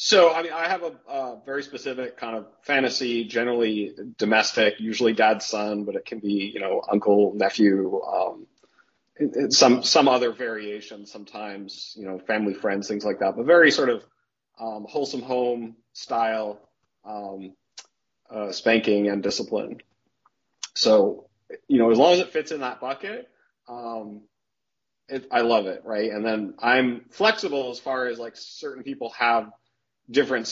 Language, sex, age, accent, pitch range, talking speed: English, male, 30-49, American, 105-125 Hz, 160 wpm